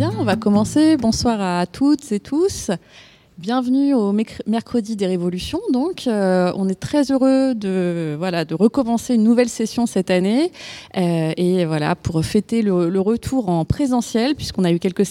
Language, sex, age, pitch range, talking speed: English, female, 20-39, 185-240 Hz, 170 wpm